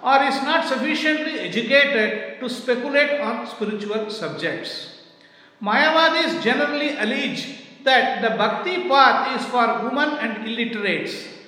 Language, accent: English, Indian